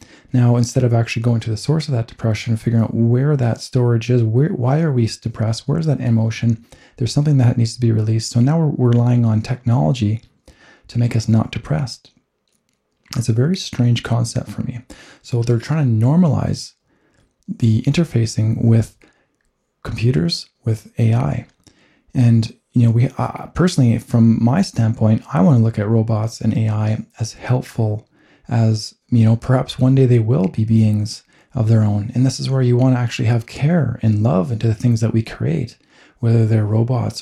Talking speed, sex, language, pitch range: 185 wpm, male, English, 110-130 Hz